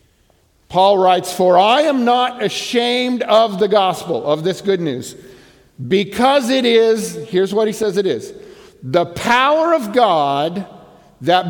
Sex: male